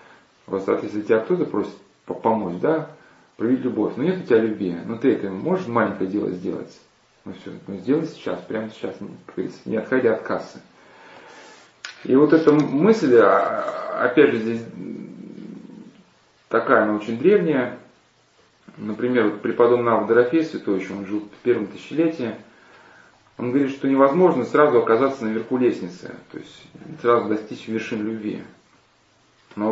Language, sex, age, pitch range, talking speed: Russian, male, 30-49, 105-130 Hz, 135 wpm